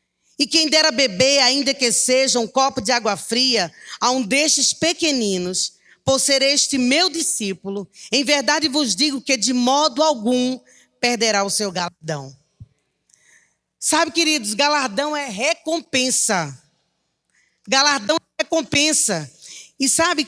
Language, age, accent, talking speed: Portuguese, 20-39, Brazilian, 125 wpm